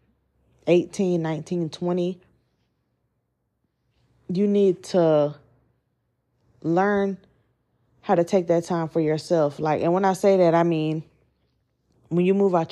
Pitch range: 150-195 Hz